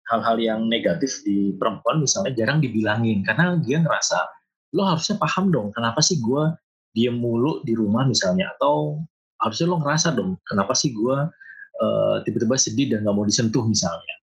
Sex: male